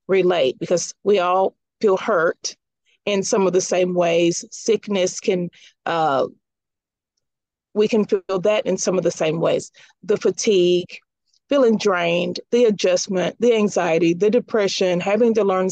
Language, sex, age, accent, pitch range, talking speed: English, female, 40-59, American, 180-220 Hz, 145 wpm